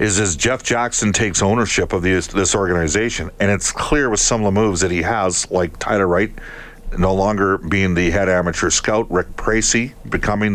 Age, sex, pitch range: 50-69, male, 95-115 Hz